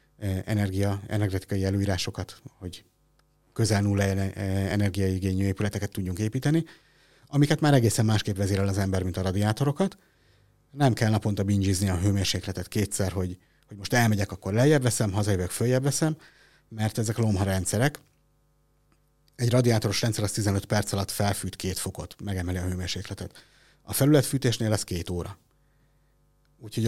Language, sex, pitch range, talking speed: Hungarian, male, 100-135 Hz, 130 wpm